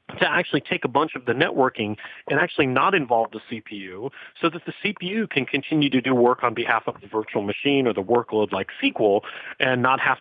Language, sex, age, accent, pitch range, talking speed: English, male, 40-59, American, 115-155 Hz, 215 wpm